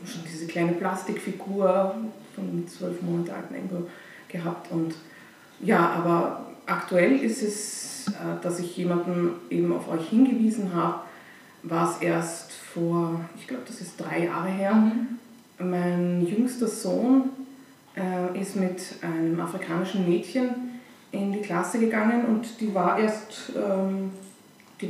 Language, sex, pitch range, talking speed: German, female, 170-215 Hz, 125 wpm